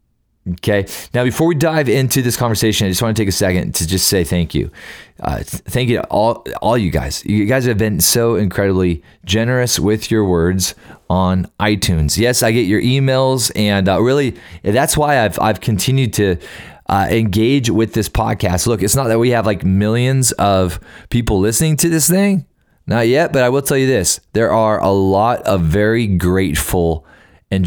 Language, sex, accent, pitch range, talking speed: English, male, American, 90-120 Hz, 195 wpm